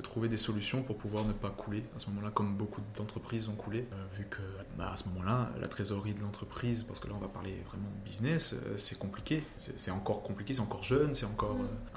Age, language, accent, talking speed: 20-39, French, French, 250 wpm